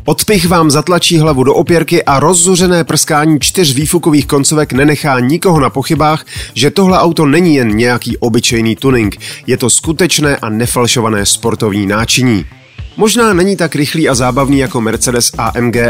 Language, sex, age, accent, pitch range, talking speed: Czech, male, 30-49, native, 120-160 Hz, 150 wpm